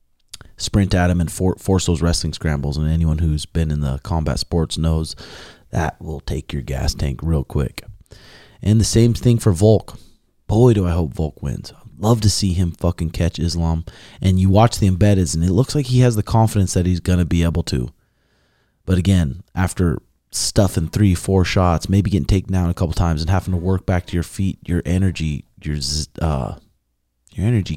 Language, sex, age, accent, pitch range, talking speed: English, male, 30-49, American, 80-105 Hz, 205 wpm